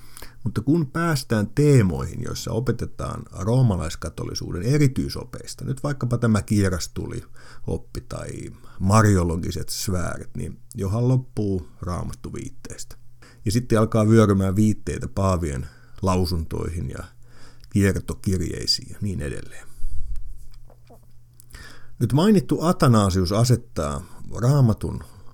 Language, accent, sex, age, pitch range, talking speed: Finnish, native, male, 50-69, 95-120 Hz, 90 wpm